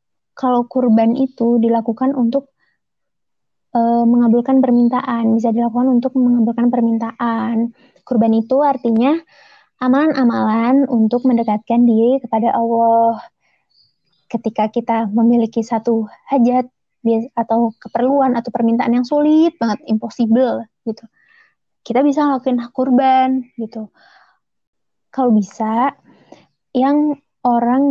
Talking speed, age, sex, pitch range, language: 100 wpm, 20-39, female, 225-255 Hz, Indonesian